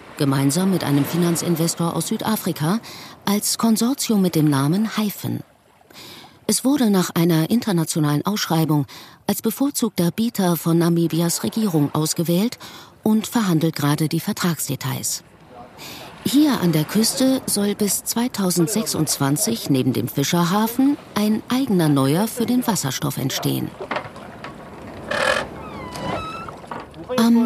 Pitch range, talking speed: 155-215 Hz, 105 wpm